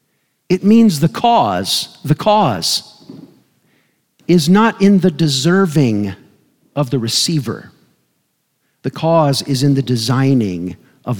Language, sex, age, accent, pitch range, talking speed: English, male, 50-69, American, 125-175 Hz, 115 wpm